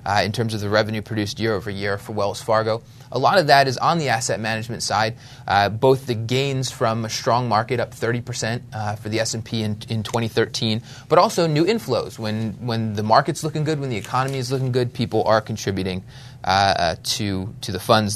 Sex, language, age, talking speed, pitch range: male, English, 20-39, 210 wpm, 115-130 Hz